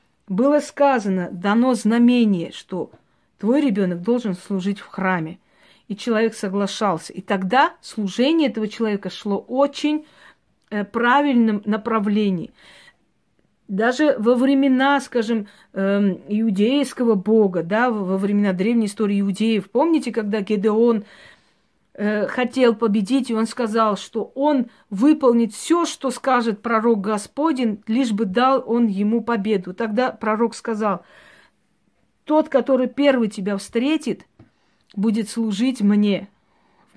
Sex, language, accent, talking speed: female, Russian, native, 110 wpm